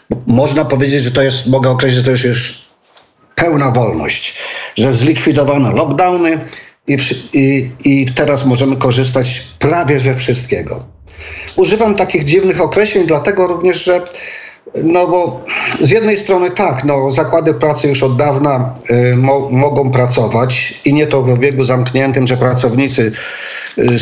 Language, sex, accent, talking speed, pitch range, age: Polish, male, native, 145 wpm, 125-155 Hz, 50-69